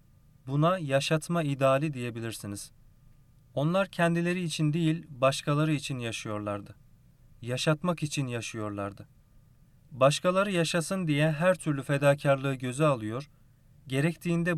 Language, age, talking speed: Turkish, 40-59, 95 wpm